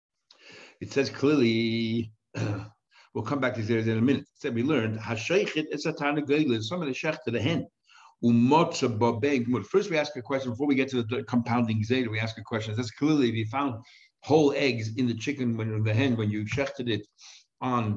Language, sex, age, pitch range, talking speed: English, male, 60-79, 120-140 Hz, 170 wpm